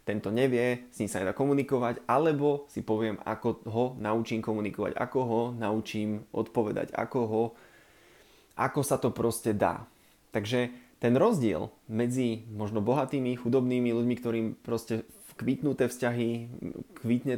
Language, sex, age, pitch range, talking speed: Slovak, male, 20-39, 110-130 Hz, 130 wpm